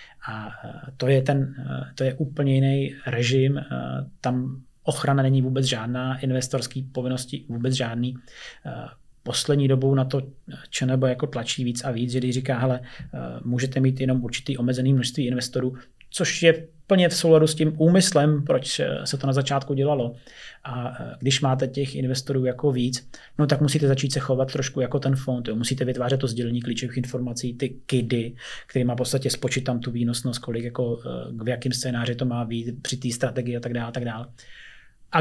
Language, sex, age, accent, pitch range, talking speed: Czech, male, 30-49, native, 125-135 Hz, 180 wpm